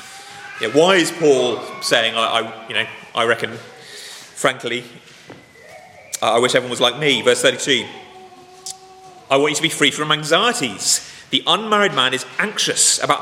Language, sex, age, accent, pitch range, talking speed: English, male, 30-49, British, 130-210 Hz, 155 wpm